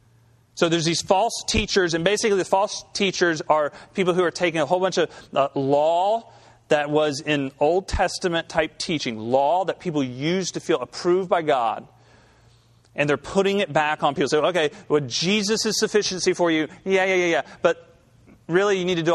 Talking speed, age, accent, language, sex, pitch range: 195 wpm, 40-59, American, English, male, 120-175 Hz